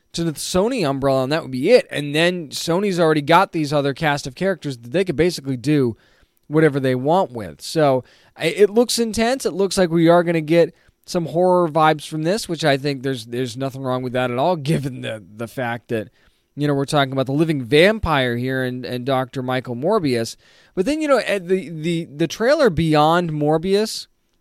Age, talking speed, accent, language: 20-39, 210 wpm, American, English